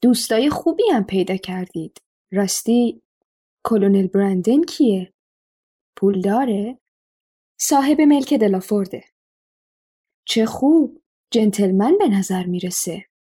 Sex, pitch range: female, 195-270 Hz